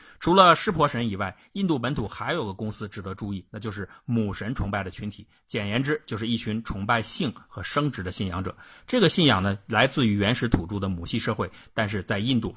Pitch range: 100-120 Hz